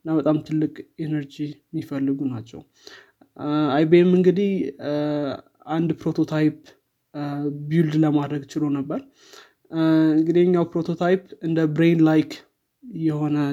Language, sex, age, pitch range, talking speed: Amharic, male, 20-39, 145-165 Hz, 85 wpm